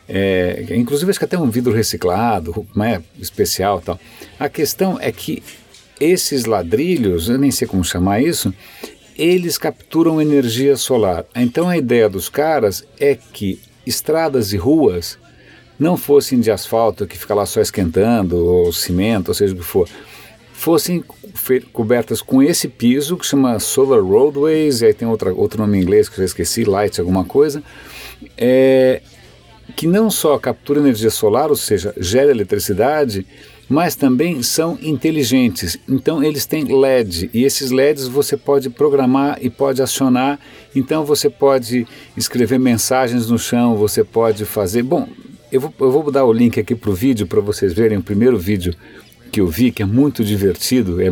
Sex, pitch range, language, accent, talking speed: male, 105-140 Hz, Portuguese, Brazilian, 165 wpm